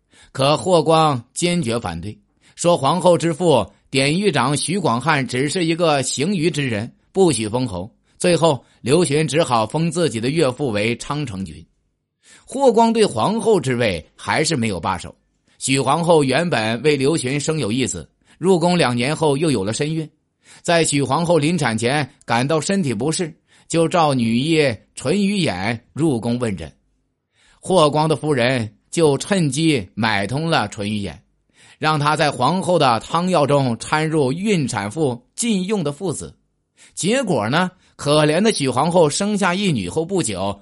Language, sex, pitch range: Chinese, male, 115-165 Hz